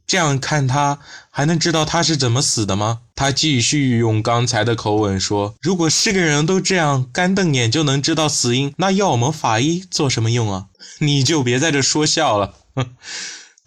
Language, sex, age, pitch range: Chinese, male, 20-39, 105-160 Hz